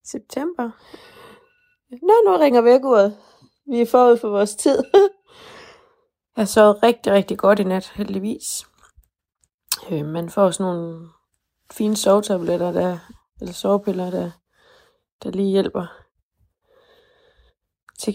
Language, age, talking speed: Danish, 20-39, 110 wpm